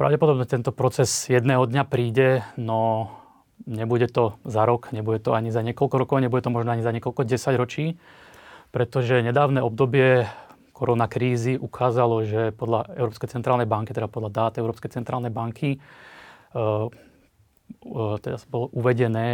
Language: Slovak